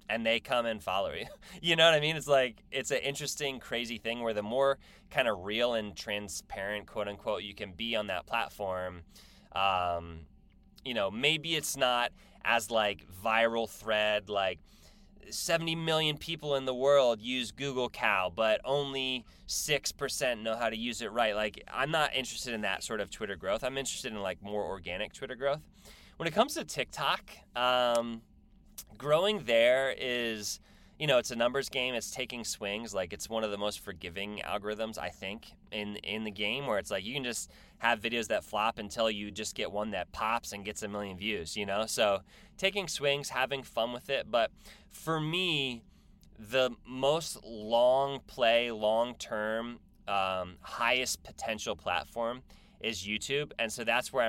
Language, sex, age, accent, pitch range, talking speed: English, male, 20-39, American, 105-135 Hz, 180 wpm